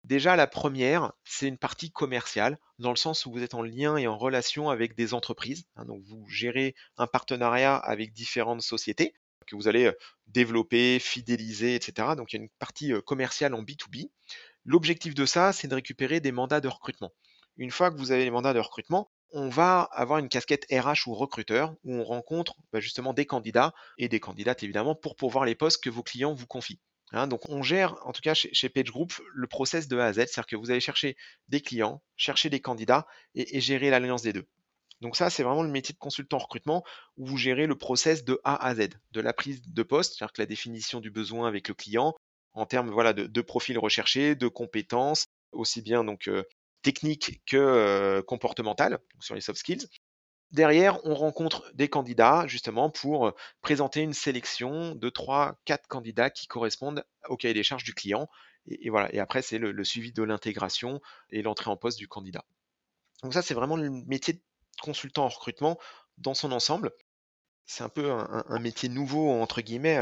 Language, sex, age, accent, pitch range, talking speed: French, male, 30-49, French, 115-145 Hz, 205 wpm